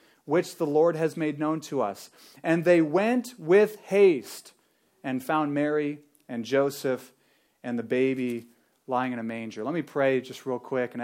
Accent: American